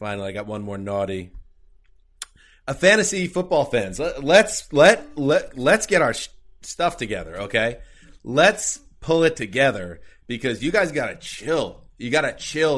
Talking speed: 165 wpm